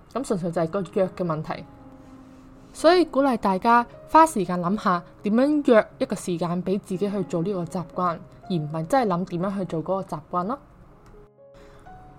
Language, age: Chinese, 20-39